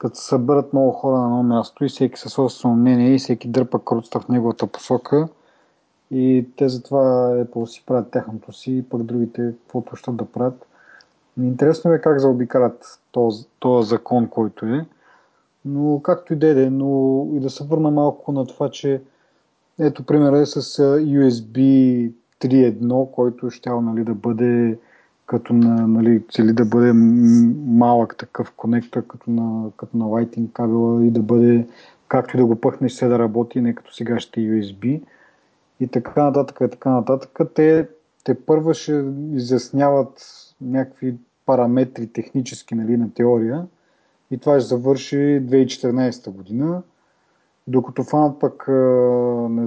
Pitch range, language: 115-135 Hz, Bulgarian